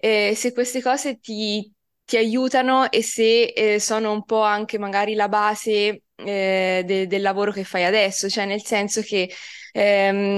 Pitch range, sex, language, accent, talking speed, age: 190-215 Hz, female, Italian, native, 170 wpm, 20-39